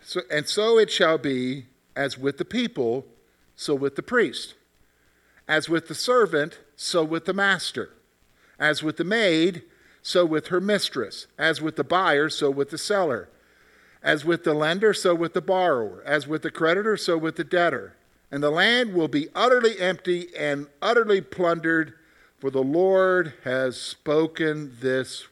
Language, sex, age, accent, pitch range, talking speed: English, male, 50-69, American, 140-190 Hz, 165 wpm